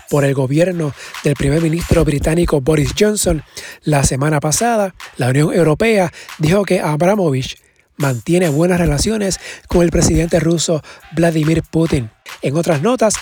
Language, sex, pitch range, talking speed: Spanish, male, 150-185 Hz, 135 wpm